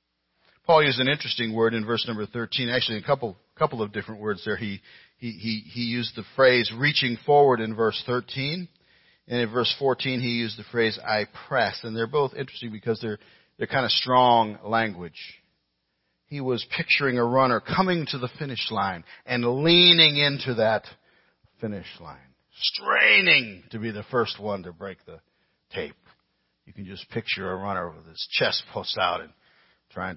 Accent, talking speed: American, 175 wpm